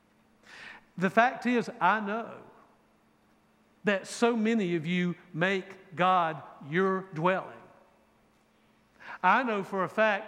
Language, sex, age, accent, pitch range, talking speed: English, male, 60-79, American, 175-215 Hz, 110 wpm